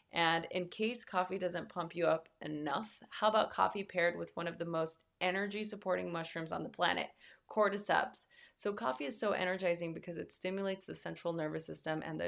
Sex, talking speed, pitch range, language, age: female, 185 wpm, 170-200 Hz, English, 20-39